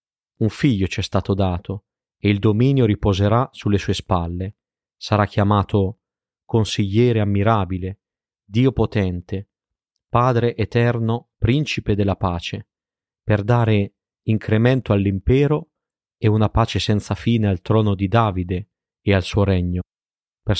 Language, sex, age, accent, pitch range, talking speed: Italian, male, 30-49, native, 100-115 Hz, 120 wpm